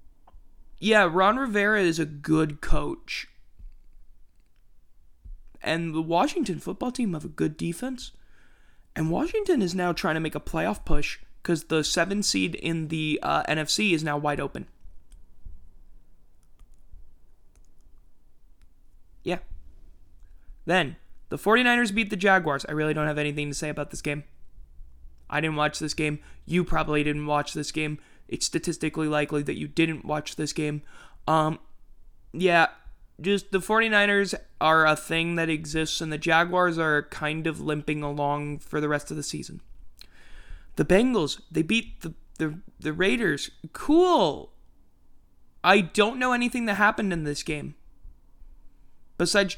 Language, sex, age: English, male, 20-39